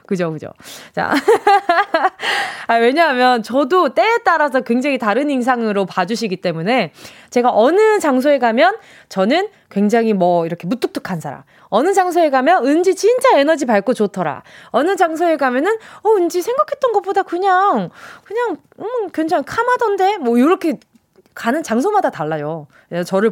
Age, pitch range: 20-39, 210-335 Hz